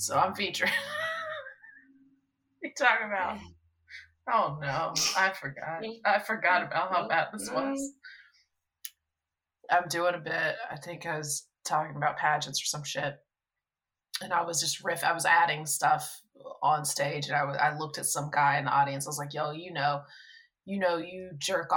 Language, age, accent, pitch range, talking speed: English, 20-39, American, 150-185 Hz, 170 wpm